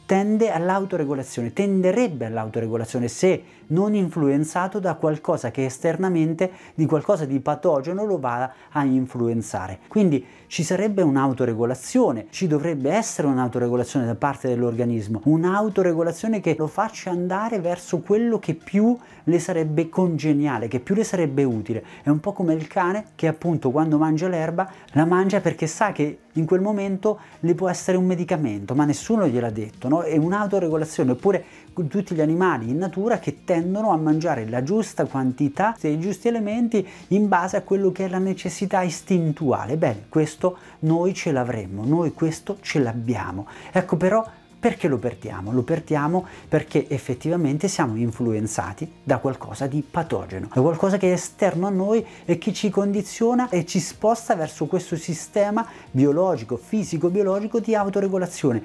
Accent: native